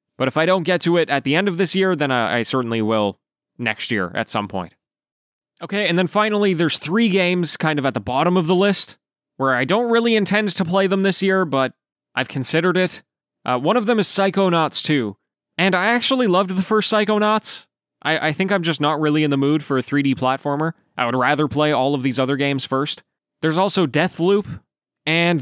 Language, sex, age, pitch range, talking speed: English, male, 20-39, 130-180 Hz, 220 wpm